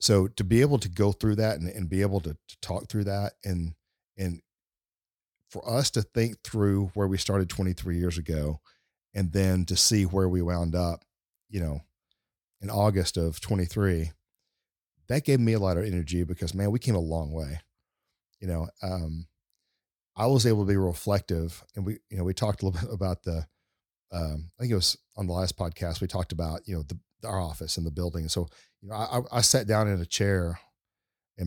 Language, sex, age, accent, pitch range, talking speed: English, male, 40-59, American, 85-105 Hz, 210 wpm